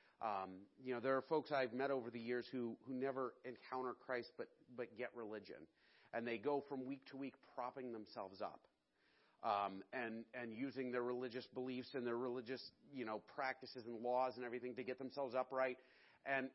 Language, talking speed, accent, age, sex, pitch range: English, 190 wpm, American, 40-59, male, 120-145 Hz